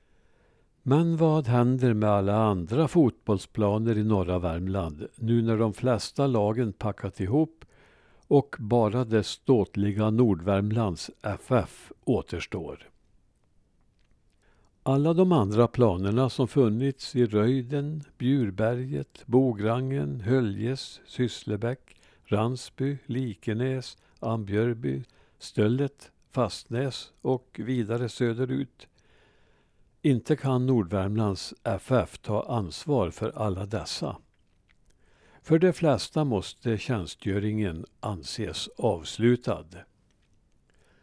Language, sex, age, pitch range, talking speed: Swedish, male, 60-79, 100-130 Hz, 90 wpm